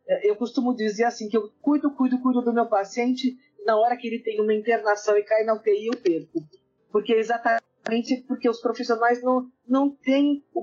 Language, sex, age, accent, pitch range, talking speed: Portuguese, female, 40-59, Brazilian, 190-255 Hz, 190 wpm